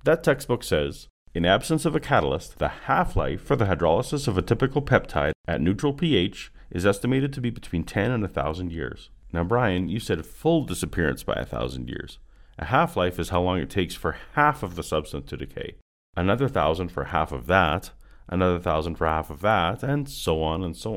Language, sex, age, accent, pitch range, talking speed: English, male, 40-59, American, 85-125 Hz, 195 wpm